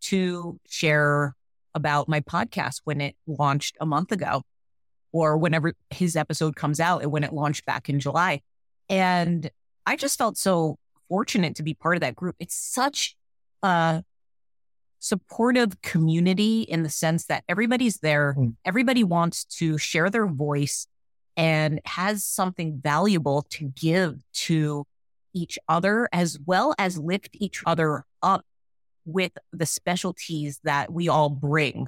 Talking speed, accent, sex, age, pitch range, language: 145 wpm, American, female, 30-49, 145-185 Hz, English